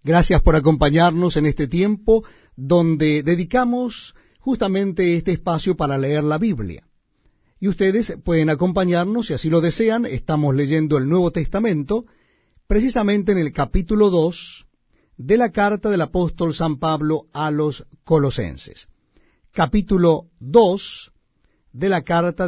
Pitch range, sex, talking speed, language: 155-205 Hz, male, 130 wpm, Spanish